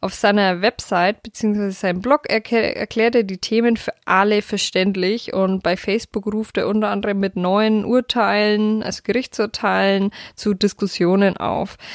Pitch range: 195-235 Hz